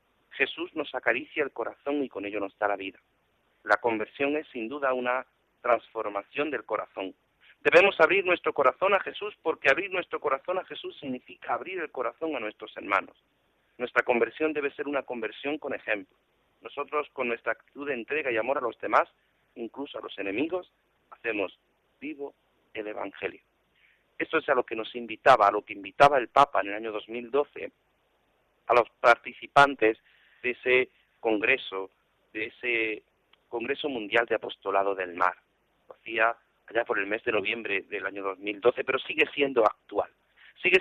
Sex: male